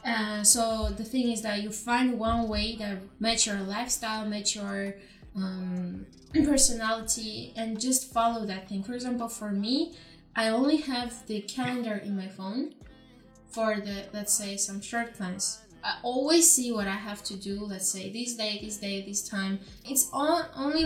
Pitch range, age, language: 200-235 Hz, 10-29, Chinese